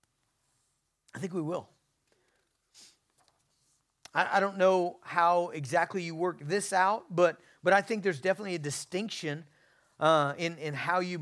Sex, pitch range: male, 140-185 Hz